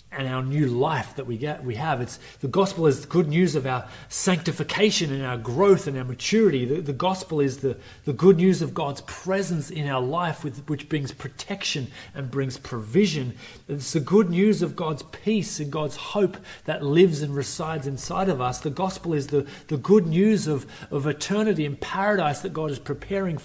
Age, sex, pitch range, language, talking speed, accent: 30-49, male, 135-180 Hz, English, 200 wpm, Australian